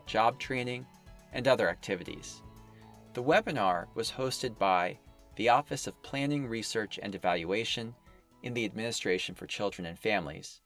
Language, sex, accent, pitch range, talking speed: English, male, American, 95-130 Hz, 135 wpm